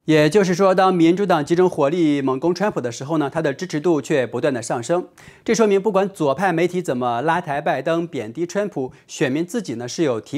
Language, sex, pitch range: Chinese, male, 140-185 Hz